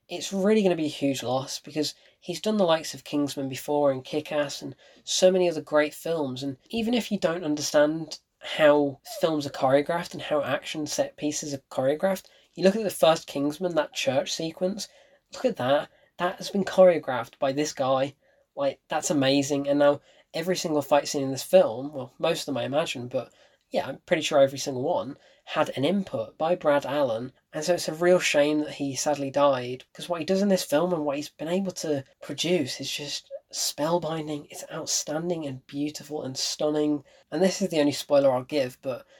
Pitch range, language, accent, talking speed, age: 145-180 Hz, English, British, 205 wpm, 10-29